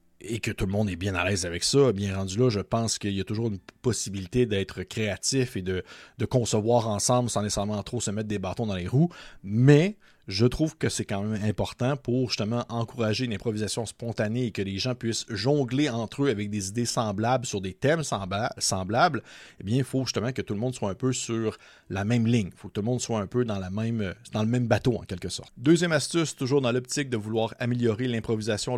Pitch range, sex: 105-125 Hz, male